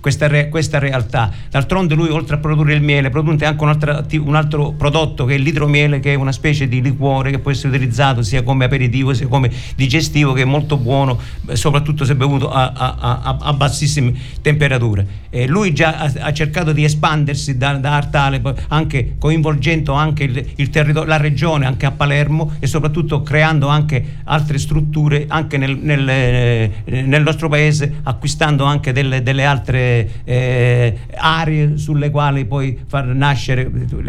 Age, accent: 50-69, native